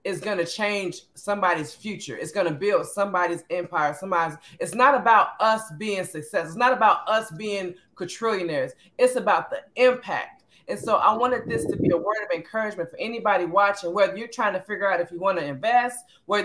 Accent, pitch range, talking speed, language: American, 195-250 Hz, 200 wpm, English